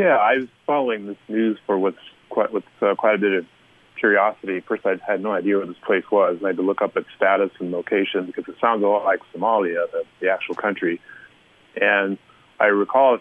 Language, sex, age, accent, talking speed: English, male, 30-49, American, 230 wpm